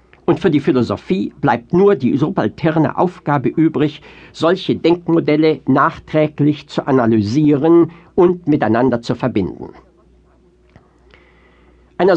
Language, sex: German, male